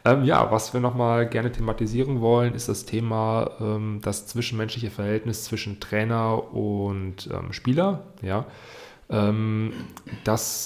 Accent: German